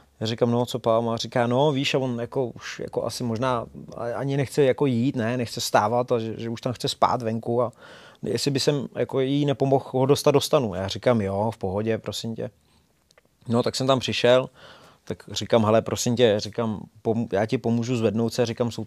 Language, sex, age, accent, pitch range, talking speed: Czech, male, 20-39, native, 115-135 Hz, 210 wpm